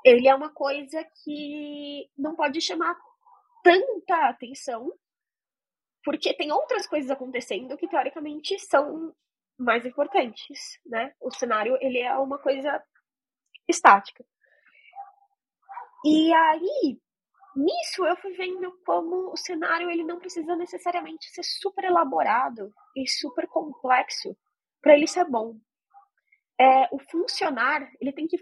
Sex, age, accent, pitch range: female, 20-39, Brazilian, 235-345 Hz